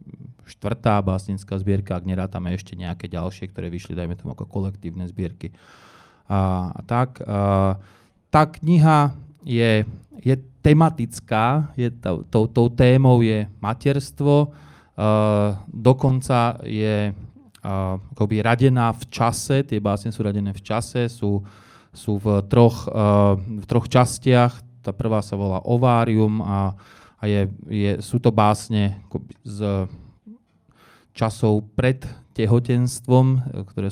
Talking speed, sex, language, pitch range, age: 115 wpm, male, Slovak, 100-120 Hz, 20-39